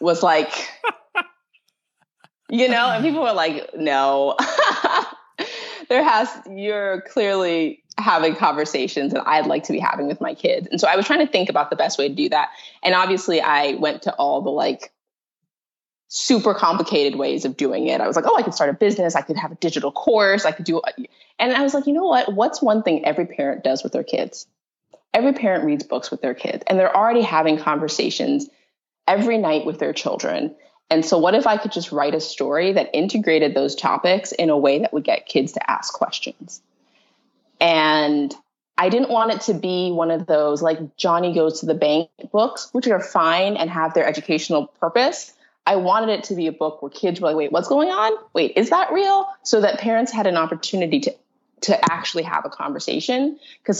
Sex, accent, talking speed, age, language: female, American, 205 wpm, 20-39, English